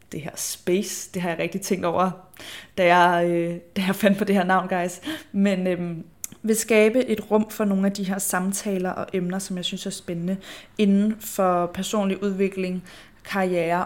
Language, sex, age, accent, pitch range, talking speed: Danish, female, 20-39, native, 185-200 Hz, 190 wpm